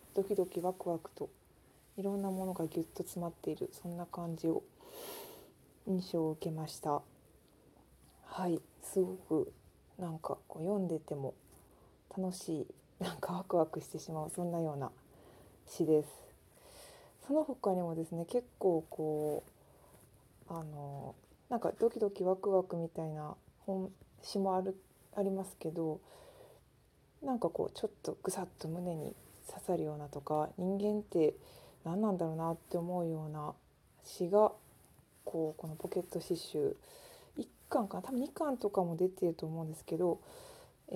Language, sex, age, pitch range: Japanese, female, 20-39, 155-195 Hz